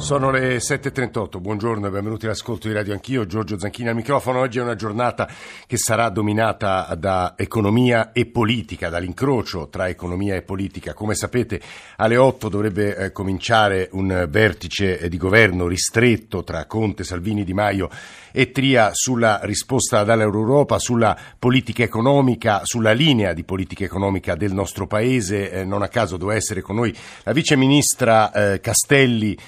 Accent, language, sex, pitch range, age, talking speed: native, Italian, male, 100-125 Hz, 50-69, 155 wpm